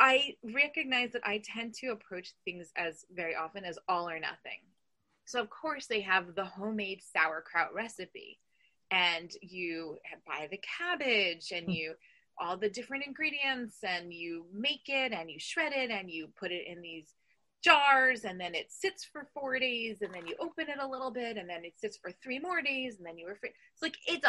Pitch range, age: 180-265 Hz, 20-39